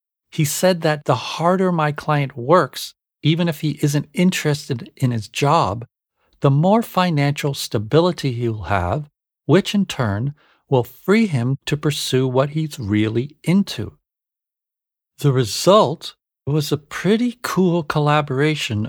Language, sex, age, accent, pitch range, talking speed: English, male, 50-69, American, 120-160 Hz, 135 wpm